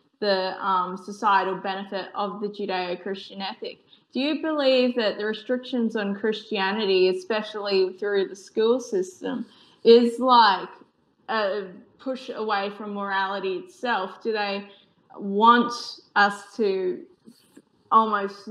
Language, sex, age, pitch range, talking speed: English, female, 20-39, 195-220 Hz, 115 wpm